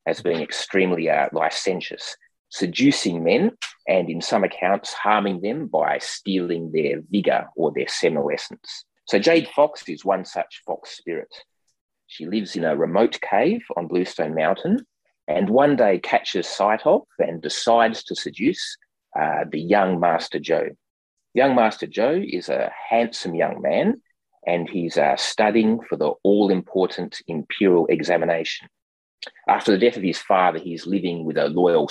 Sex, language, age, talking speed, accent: male, English, 30-49, 150 wpm, Australian